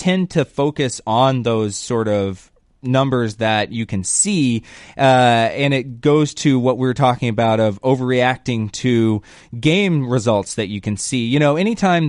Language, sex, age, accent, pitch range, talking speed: English, male, 20-39, American, 110-135 Hz, 165 wpm